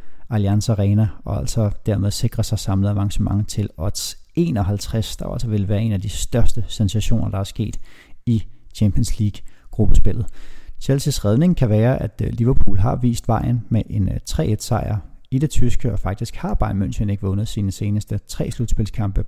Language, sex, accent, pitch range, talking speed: Danish, male, native, 100-115 Hz, 165 wpm